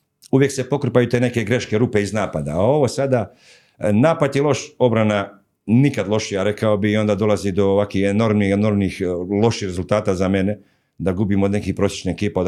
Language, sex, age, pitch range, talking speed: Croatian, male, 50-69, 95-115 Hz, 180 wpm